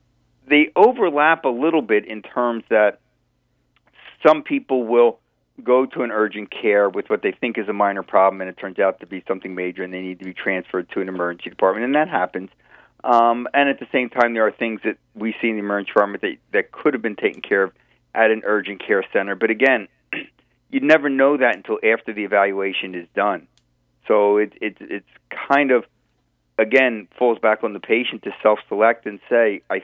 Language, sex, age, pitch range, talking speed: English, male, 40-59, 95-115 Hz, 205 wpm